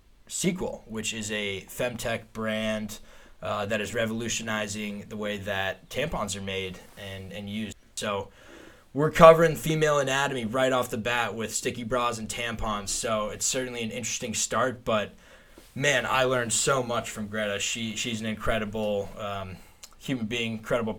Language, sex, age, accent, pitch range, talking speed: English, male, 20-39, American, 105-115 Hz, 155 wpm